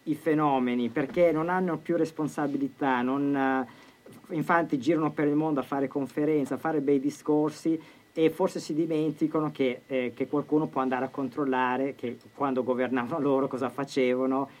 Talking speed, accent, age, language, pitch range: 150 wpm, native, 40-59, Italian, 130-150 Hz